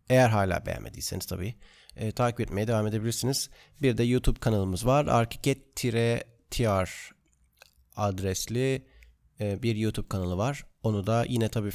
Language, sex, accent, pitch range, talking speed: Turkish, male, native, 105-125 Hz, 130 wpm